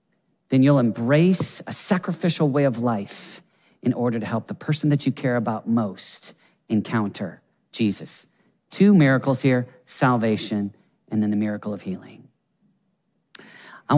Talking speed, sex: 135 wpm, male